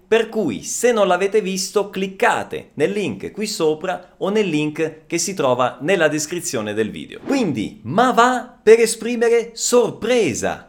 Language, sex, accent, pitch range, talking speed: Italian, male, native, 195-240 Hz, 150 wpm